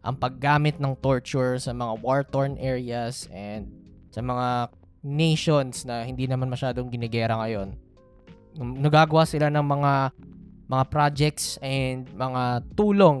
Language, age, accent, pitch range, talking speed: Filipino, 20-39, native, 130-210 Hz, 125 wpm